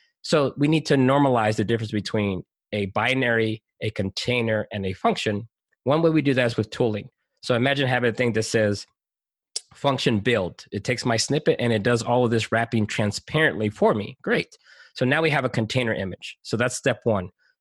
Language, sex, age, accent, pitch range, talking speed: Portuguese, male, 20-39, American, 110-145 Hz, 200 wpm